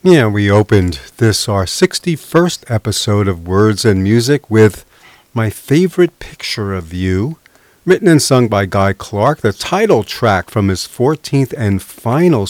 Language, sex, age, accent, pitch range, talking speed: English, male, 40-59, American, 100-155 Hz, 150 wpm